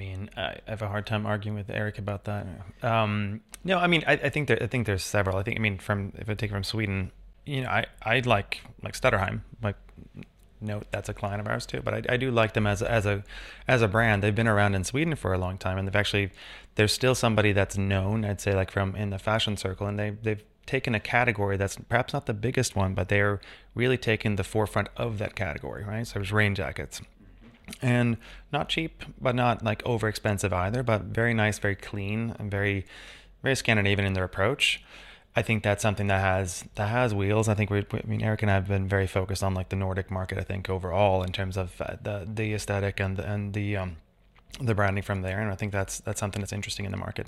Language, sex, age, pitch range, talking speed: English, male, 30-49, 100-115 Hz, 240 wpm